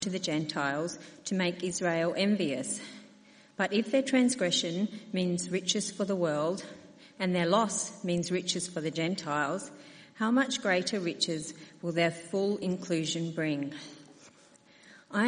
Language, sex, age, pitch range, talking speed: English, female, 40-59, 170-215 Hz, 135 wpm